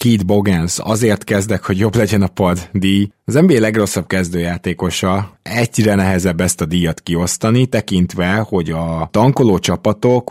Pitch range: 85-105 Hz